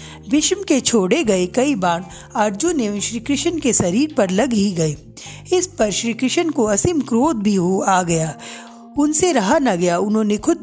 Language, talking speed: Hindi, 185 wpm